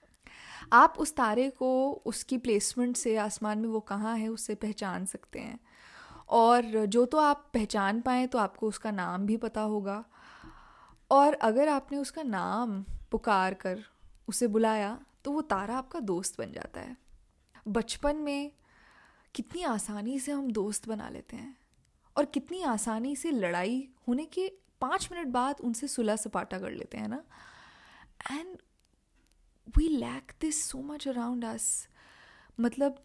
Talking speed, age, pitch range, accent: 150 wpm, 10-29, 215-280 Hz, native